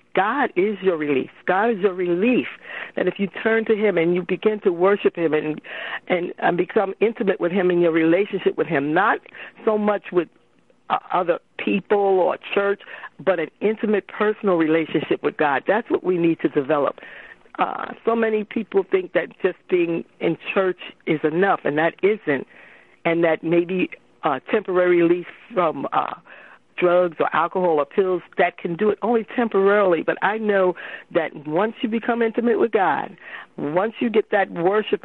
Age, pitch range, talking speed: 50-69, 170-215 Hz, 180 wpm